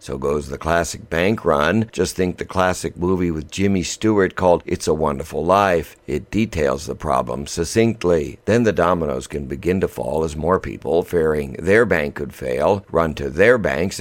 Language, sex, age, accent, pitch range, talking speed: English, male, 60-79, American, 80-100 Hz, 185 wpm